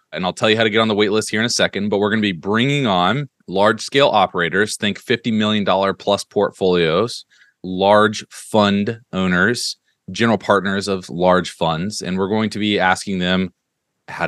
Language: English